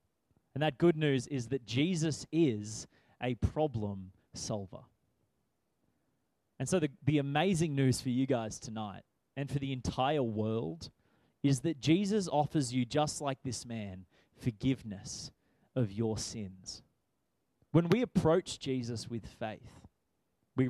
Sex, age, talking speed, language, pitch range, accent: male, 20-39, 135 wpm, English, 110-150 Hz, Australian